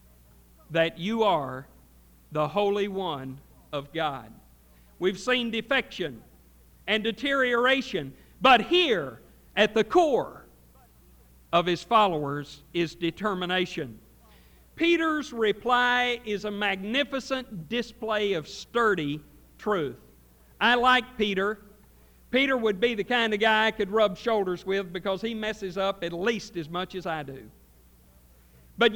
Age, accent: 50-69, American